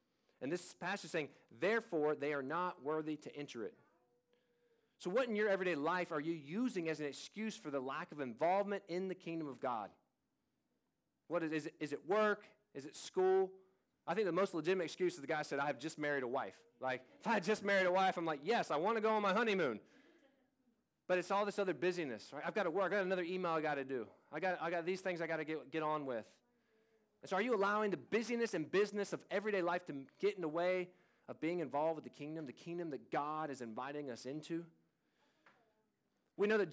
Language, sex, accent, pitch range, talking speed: English, male, American, 155-205 Hz, 235 wpm